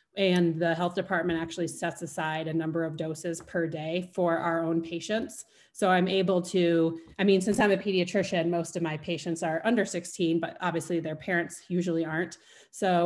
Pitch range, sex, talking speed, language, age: 165-185 Hz, female, 190 wpm, English, 30-49